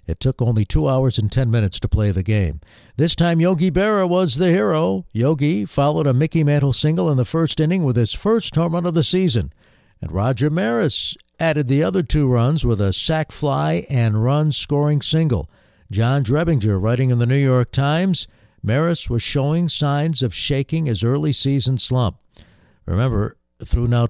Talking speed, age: 185 wpm, 60-79